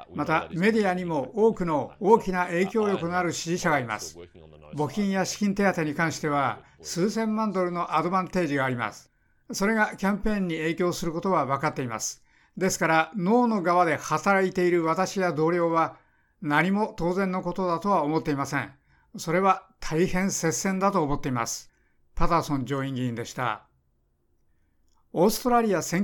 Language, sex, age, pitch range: Japanese, male, 60-79, 145-190 Hz